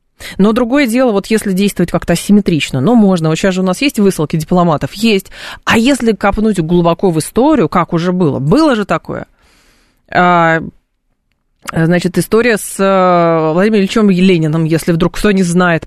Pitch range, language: 175-230 Hz, Russian